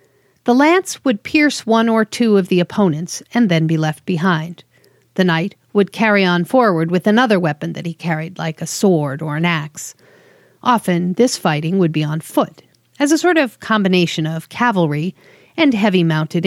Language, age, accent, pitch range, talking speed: English, 40-59, American, 160-215 Hz, 180 wpm